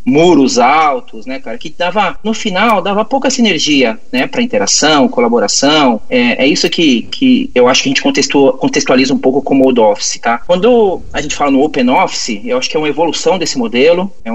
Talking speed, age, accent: 200 wpm, 30-49, Brazilian